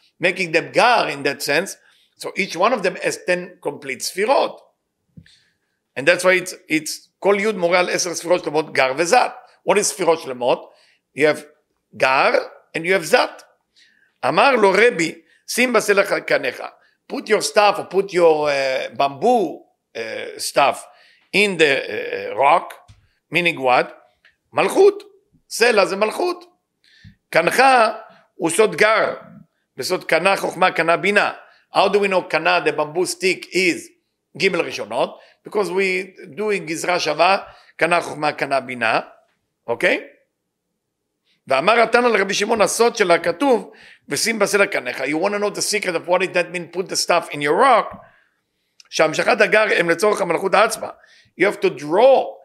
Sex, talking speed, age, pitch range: male, 120 wpm, 50-69, 165-225 Hz